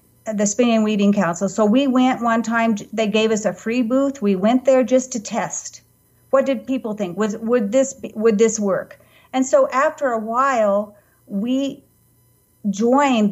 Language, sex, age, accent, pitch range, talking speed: English, female, 40-59, American, 195-235 Hz, 180 wpm